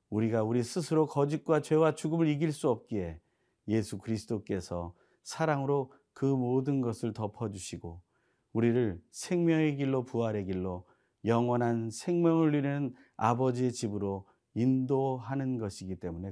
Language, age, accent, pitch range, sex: Korean, 40-59, native, 110-145 Hz, male